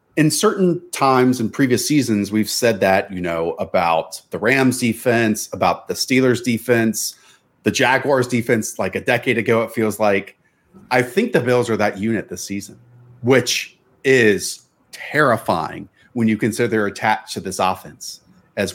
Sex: male